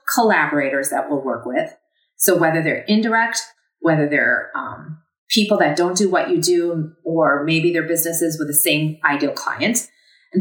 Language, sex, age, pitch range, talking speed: English, female, 30-49, 160-215 Hz, 165 wpm